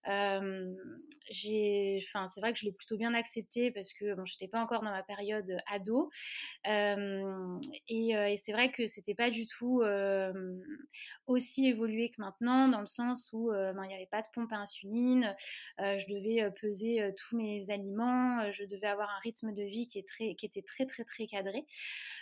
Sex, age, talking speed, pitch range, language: female, 20-39, 215 wpm, 200-240 Hz, French